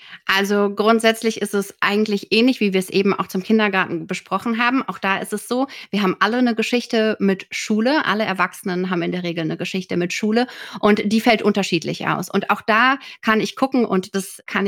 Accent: German